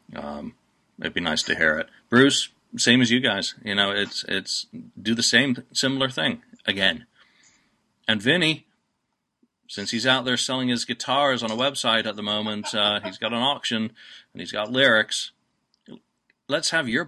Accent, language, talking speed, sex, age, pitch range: American, English, 170 wpm, male, 40-59, 100-125 Hz